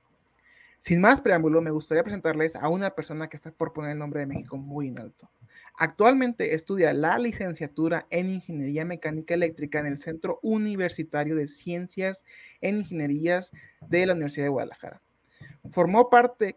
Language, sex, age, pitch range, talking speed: Spanish, male, 30-49, 150-190 Hz, 155 wpm